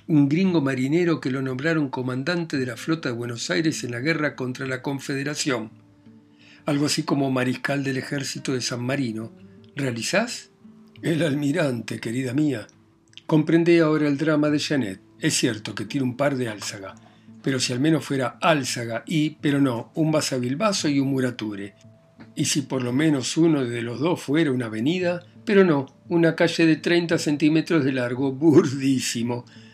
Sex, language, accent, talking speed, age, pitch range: male, Spanish, Argentinian, 170 wpm, 60-79, 120-155 Hz